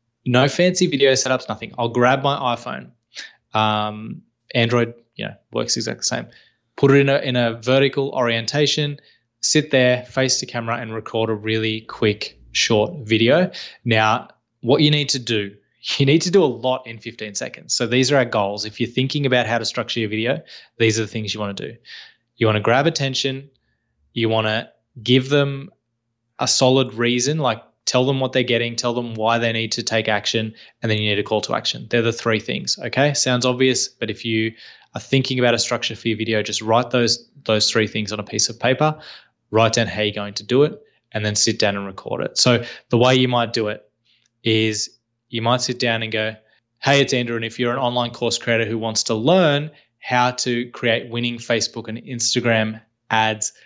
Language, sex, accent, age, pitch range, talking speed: English, male, Australian, 20-39, 110-130 Hz, 215 wpm